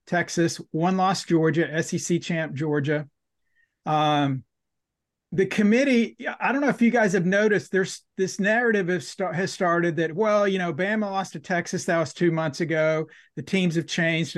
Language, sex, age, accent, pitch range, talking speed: English, male, 40-59, American, 160-195 Hz, 175 wpm